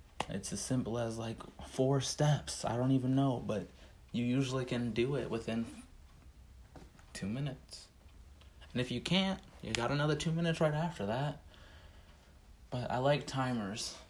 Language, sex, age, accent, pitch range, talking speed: English, male, 30-49, American, 90-130 Hz, 155 wpm